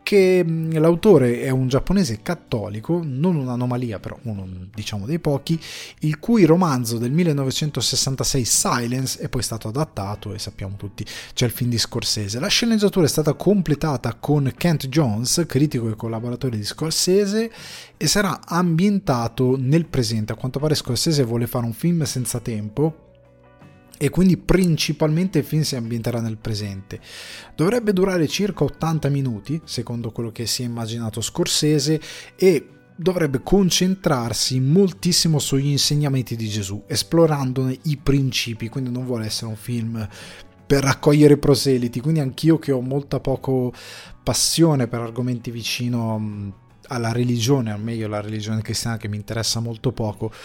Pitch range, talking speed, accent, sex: 115-155 Hz, 145 wpm, native, male